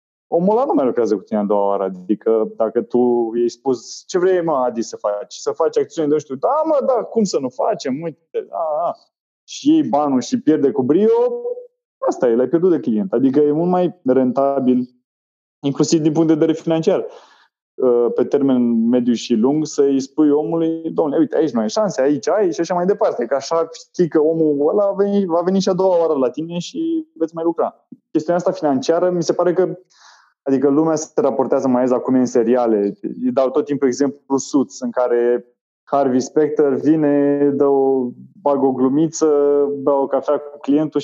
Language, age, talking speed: Romanian, 20-39, 195 wpm